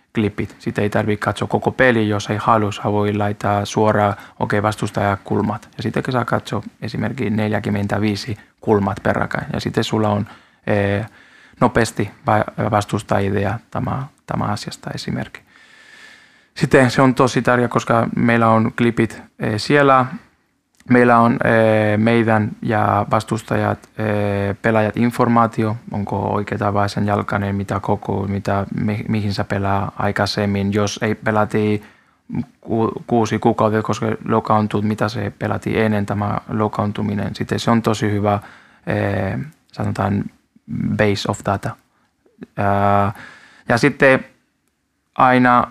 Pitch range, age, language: 105-115 Hz, 20-39, Finnish